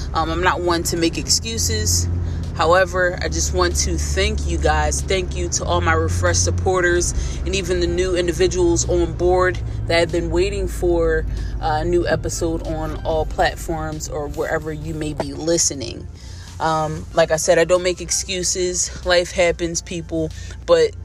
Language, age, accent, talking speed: English, 20-39, American, 165 wpm